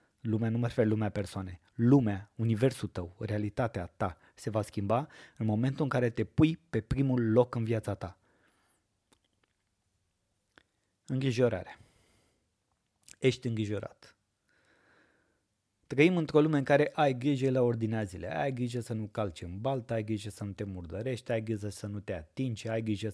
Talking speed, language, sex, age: 155 wpm, Romanian, male, 20-39